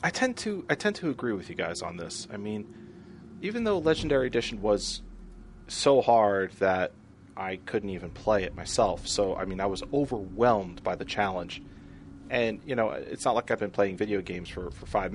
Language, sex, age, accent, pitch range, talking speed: English, male, 30-49, American, 95-115 Hz, 200 wpm